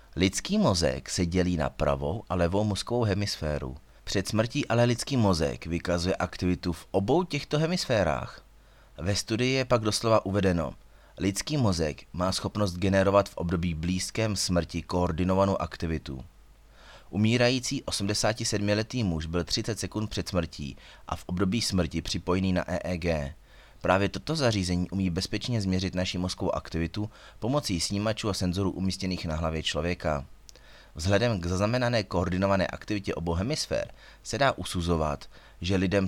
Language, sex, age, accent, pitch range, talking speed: Czech, male, 30-49, native, 85-105 Hz, 135 wpm